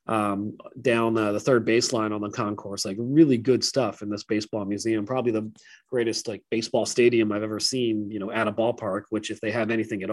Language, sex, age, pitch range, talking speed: English, male, 30-49, 105-140 Hz, 220 wpm